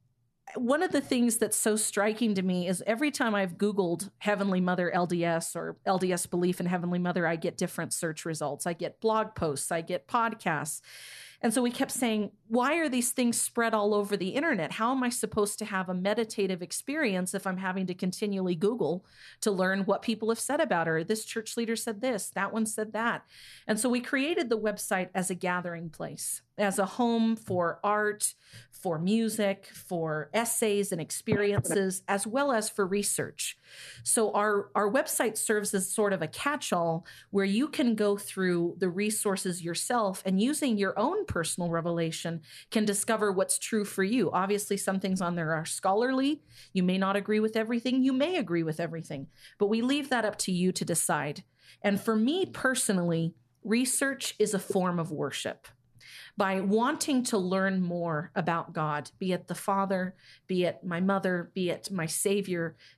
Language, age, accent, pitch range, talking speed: English, 40-59, American, 180-220 Hz, 185 wpm